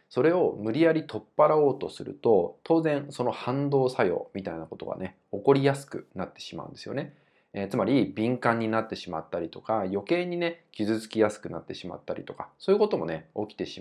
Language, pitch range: Japanese, 100-170 Hz